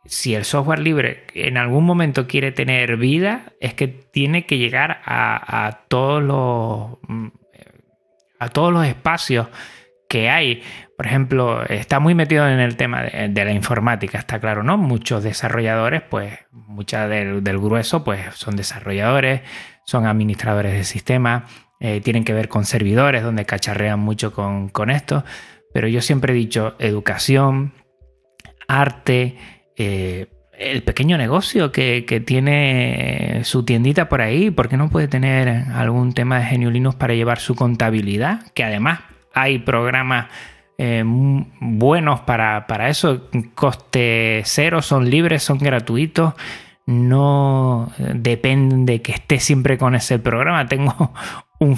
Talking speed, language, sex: 140 wpm, Spanish, male